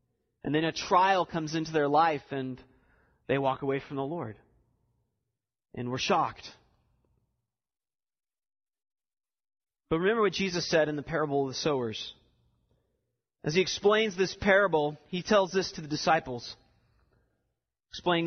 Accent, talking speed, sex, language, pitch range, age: American, 135 wpm, male, English, 150-215 Hz, 30-49